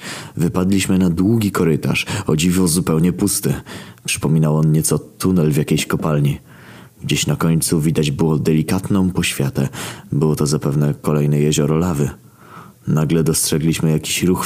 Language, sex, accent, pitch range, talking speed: Polish, male, native, 75-85 Hz, 135 wpm